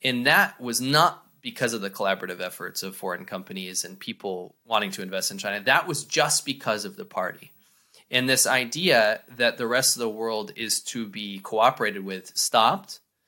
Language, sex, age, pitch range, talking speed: English, male, 20-39, 105-145 Hz, 185 wpm